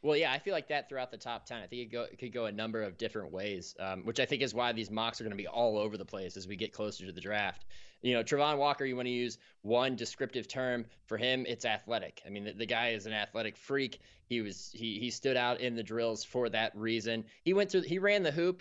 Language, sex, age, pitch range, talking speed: English, male, 20-39, 115-150 Hz, 285 wpm